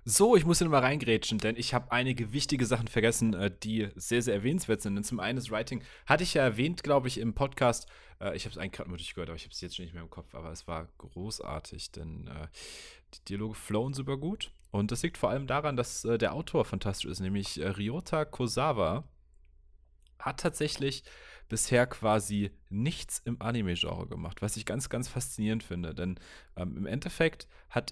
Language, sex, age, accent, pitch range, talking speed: German, male, 30-49, German, 95-130 Hz, 195 wpm